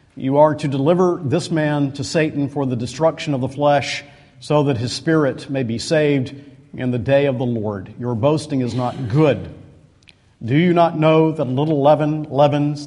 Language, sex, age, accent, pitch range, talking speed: English, male, 50-69, American, 140-185 Hz, 190 wpm